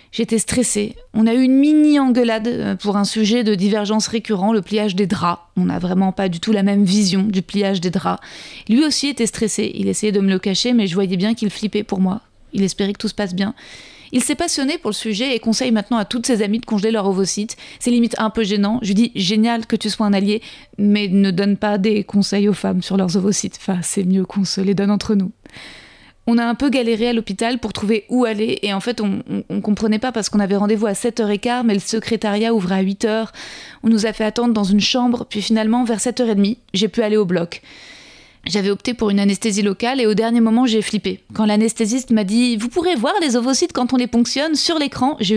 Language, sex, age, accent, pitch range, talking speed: French, female, 30-49, French, 200-235 Hz, 245 wpm